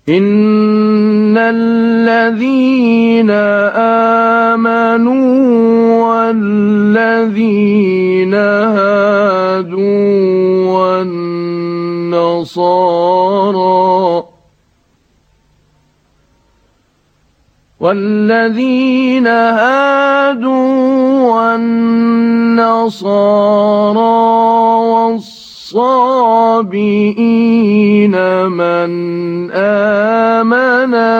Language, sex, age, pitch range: Arabic, male, 40-59, 185-230 Hz